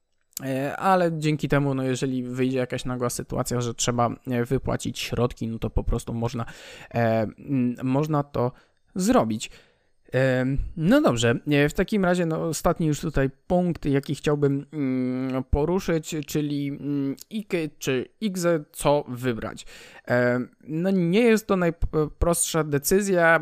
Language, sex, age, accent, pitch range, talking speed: Polish, male, 20-39, native, 125-160 Hz, 135 wpm